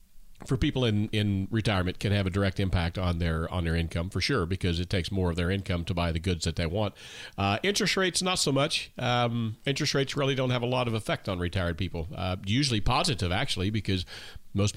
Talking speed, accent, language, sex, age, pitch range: 230 wpm, American, English, male, 40-59, 95-135 Hz